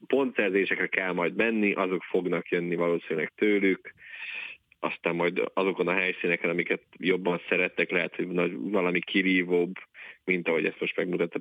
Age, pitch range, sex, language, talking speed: 30-49, 90-105 Hz, male, Hungarian, 135 wpm